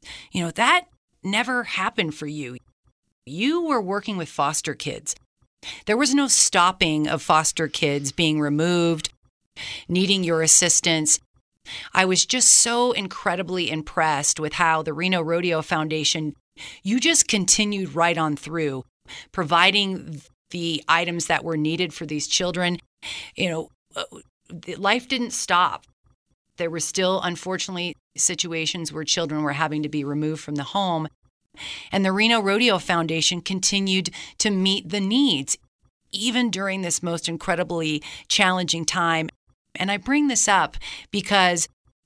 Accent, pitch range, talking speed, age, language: American, 155-200 Hz, 135 wpm, 40-59, English